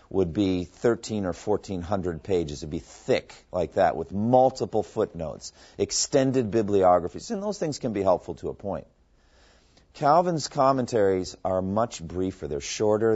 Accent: American